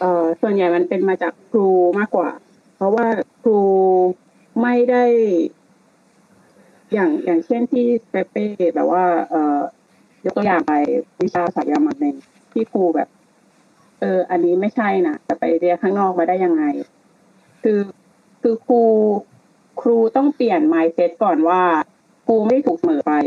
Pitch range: 175-240 Hz